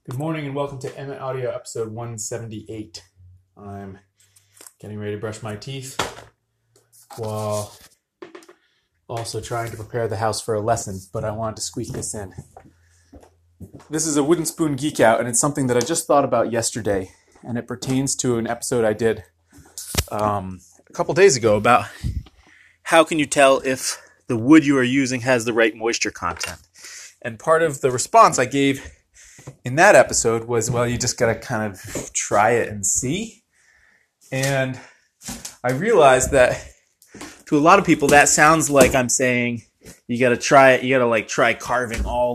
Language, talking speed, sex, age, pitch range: English, 180 wpm, male, 20-39, 110-140 Hz